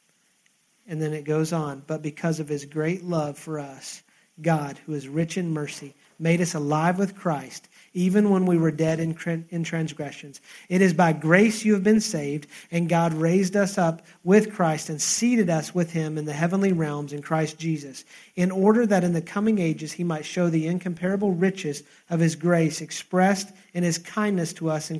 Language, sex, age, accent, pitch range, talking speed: English, male, 40-59, American, 165-215 Hz, 195 wpm